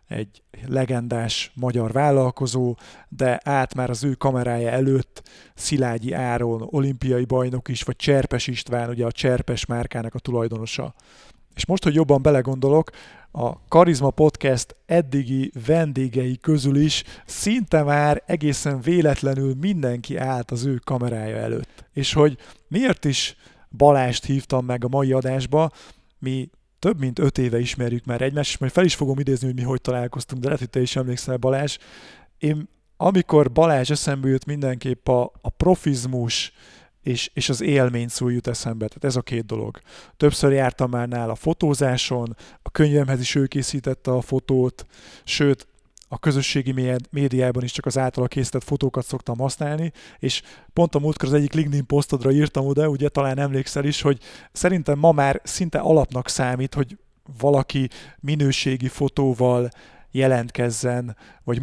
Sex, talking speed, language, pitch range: male, 150 wpm, Hungarian, 125-145 Hz